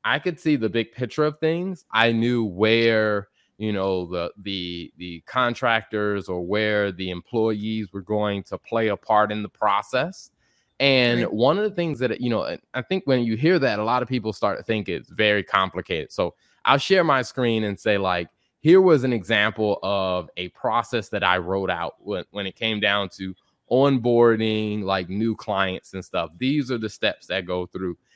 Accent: American